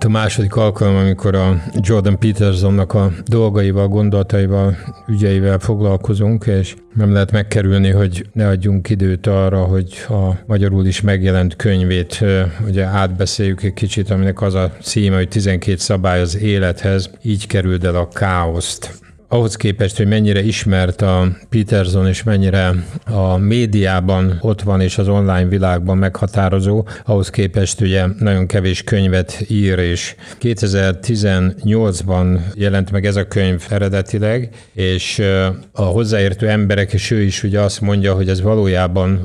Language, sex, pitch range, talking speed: Hungarian, male, 95-105 Hz, 140 wpm